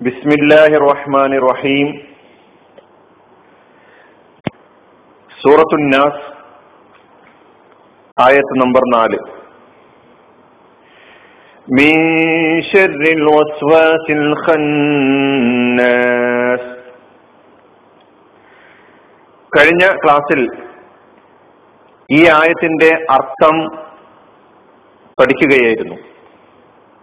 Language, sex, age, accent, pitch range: Malayalam, male, 50-69, native, 145-180 Hz